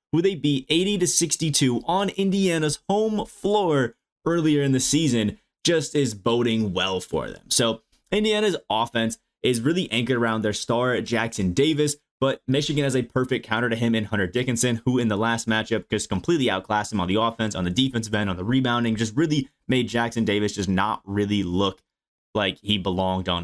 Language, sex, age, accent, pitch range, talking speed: English, male, 20-39, American, 105-130 Hz, 190 wpm